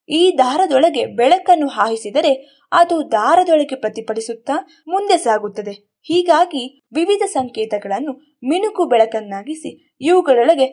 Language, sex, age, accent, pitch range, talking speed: Kannada, female, 20-39, native, 235-350 Hz, 85 wpm